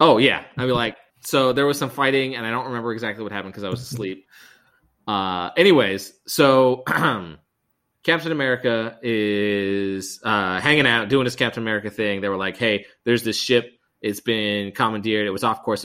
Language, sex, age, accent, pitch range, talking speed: English, male, 20-39, American, 100-130 Hz, 185 wpm